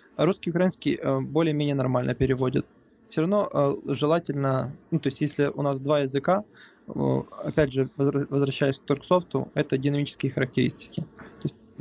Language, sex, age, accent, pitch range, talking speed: Russian, male, 20-39, native, 135-155 Hz, 135 wpm